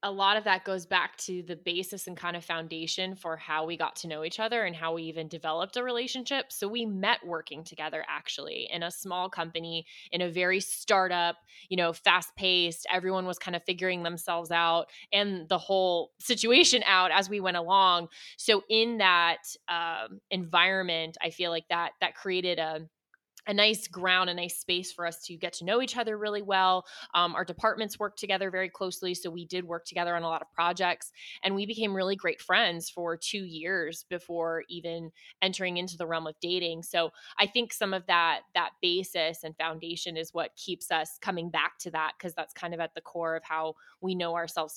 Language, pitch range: English, 165-190 Hz